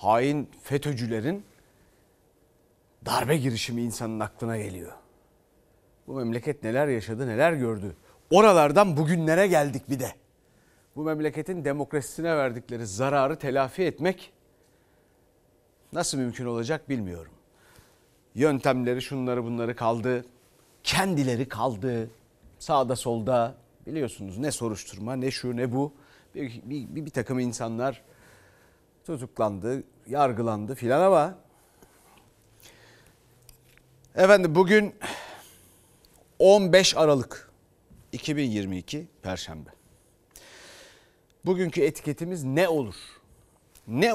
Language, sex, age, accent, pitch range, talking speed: Turkish, male, 40-59, native, 115-150 Hz, 90 wpm